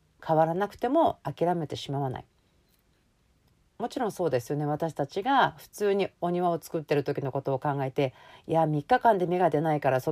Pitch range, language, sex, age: 140-195 Hz, Japanese, female, 40-59